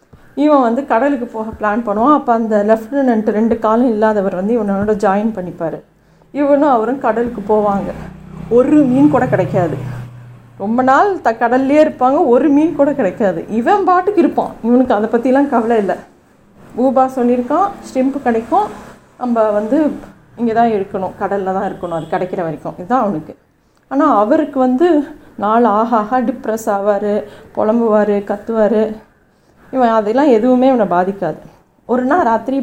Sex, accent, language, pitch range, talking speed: female, native, Tamil, 210-260 Hz, 140 wpm